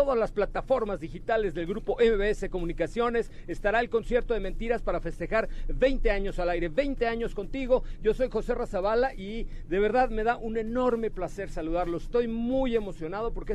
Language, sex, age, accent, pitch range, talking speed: Spanish, male, 40-59, Mexican, 175-230 Hz, 175 wpm